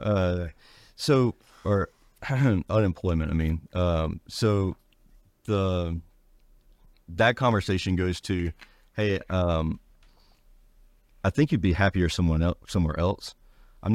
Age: 40-59